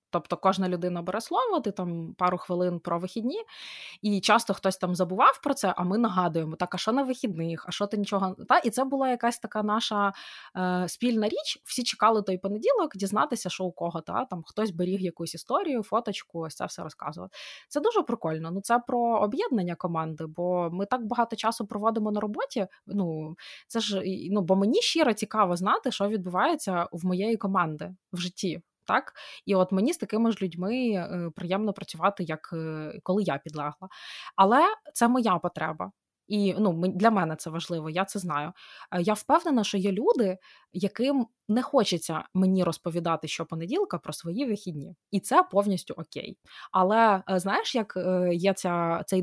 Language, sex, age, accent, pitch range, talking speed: Ukrainian, female, 20-39, native, 175-225 Hz, 180 wpm